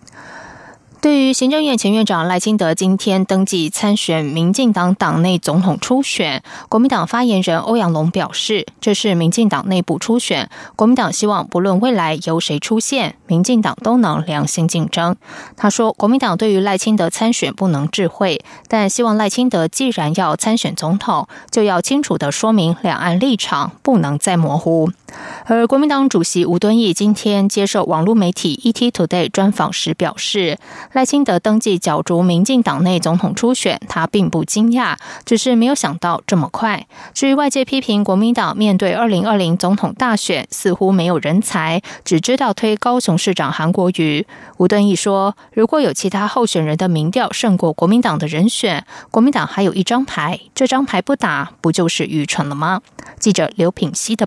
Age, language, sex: 20-39, German, female